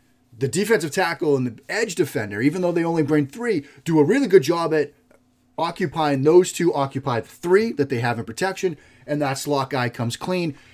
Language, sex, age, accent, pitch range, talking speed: English, male, 30-49, American, 125-160 Hz, 200 wpm